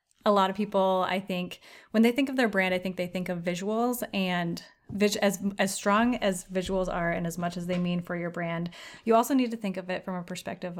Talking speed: 245 wpm